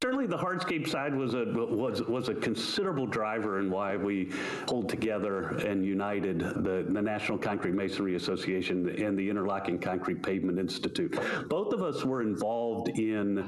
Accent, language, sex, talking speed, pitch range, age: American, English, male, 160 wpm, 105-125 Hz, 50-69